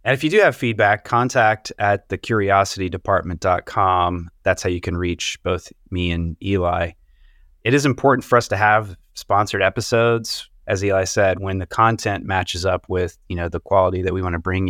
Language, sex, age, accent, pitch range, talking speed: English, male, 30-49, American, 90-115 Hz, 190 wpm